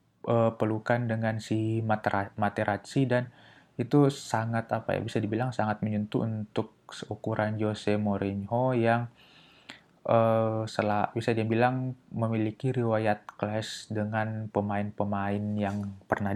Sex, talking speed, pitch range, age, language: male, 115 wpm, 105-125 Hz, 20-39, Indonesian